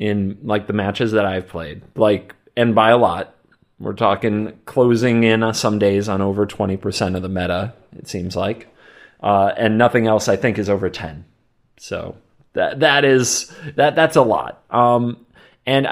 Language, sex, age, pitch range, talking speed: English, male, 30-49, 95-120 Hz, 175 wpm